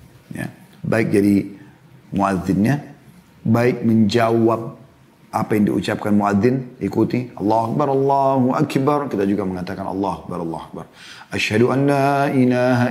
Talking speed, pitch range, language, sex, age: 115 wpm, 105-150 Hz, Indonesian, male, 30-49